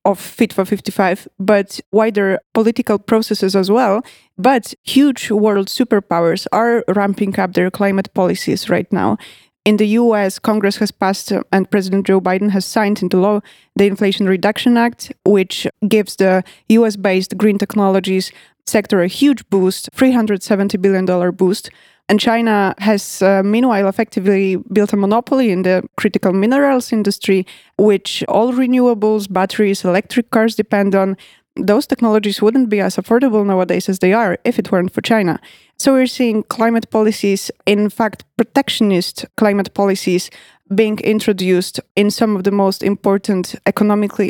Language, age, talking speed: Polish, 20-39, 150 wpm